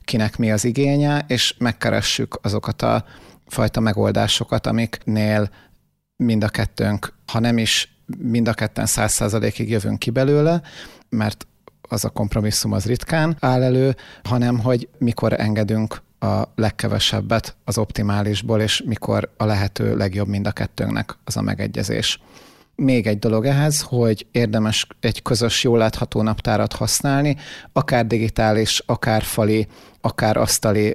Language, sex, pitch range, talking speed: Hungarian, male, 105-120 Hz, 135 wpm